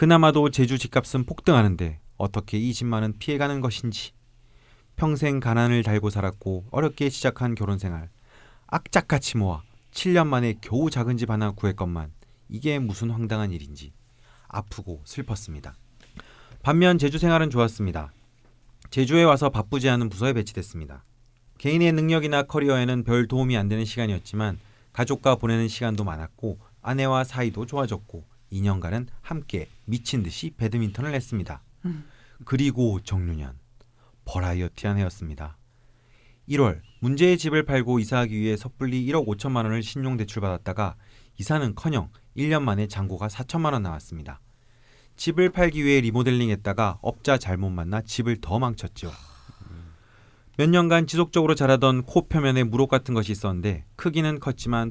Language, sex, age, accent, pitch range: Korean, male, 30-49, native, 105-135 Hz